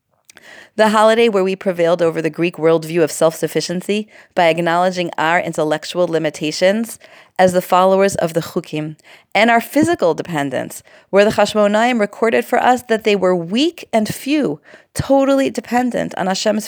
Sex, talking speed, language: female, 150 wpm, English